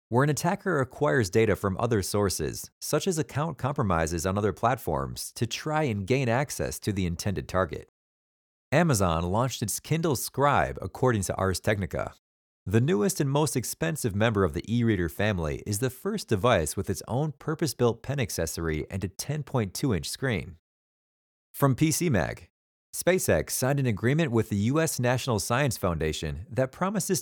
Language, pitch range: English, 95-140 Hz